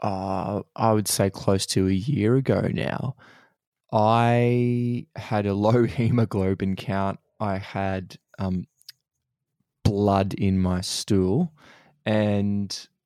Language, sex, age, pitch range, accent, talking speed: English, male, 20-39, 100-120 Hz, Australian, 110 wpm